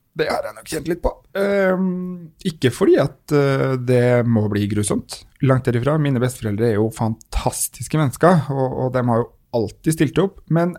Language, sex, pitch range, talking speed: English, male, 115-150 Hz, 170 wpm